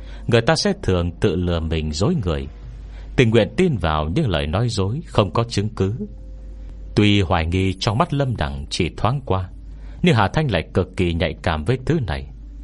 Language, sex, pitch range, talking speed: Vietnamese, male, 80-115 Hz, 200 wpm